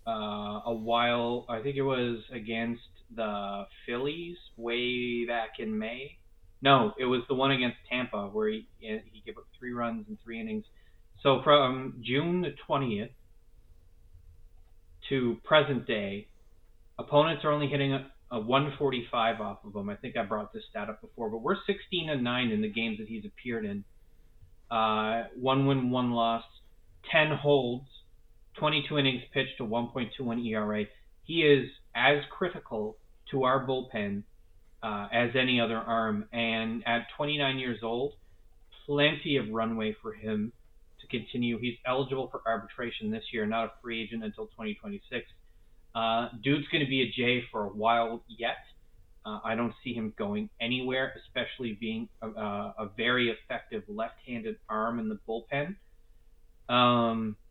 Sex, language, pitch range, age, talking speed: male, English, 110-135 Hz, 20-39, 155 wpm